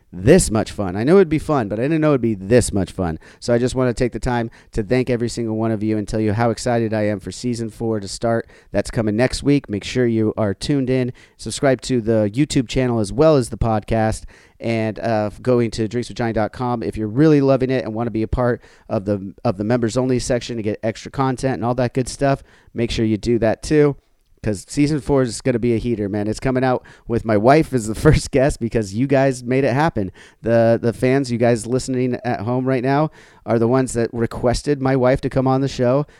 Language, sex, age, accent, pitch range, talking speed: English, male, 40-59, American, 110-130 Hz, 250 wpm